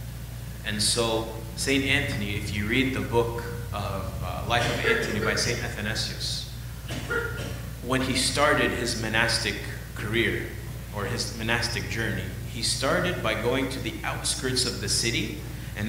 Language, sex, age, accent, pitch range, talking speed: English, male, 30-49, American, 110-135 Hz, 145 wpm